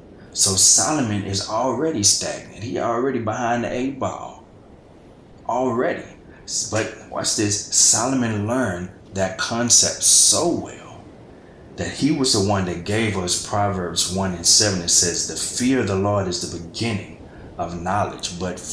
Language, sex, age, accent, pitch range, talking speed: English, male, 30-49, American, 90-110 Hz, 145 wpm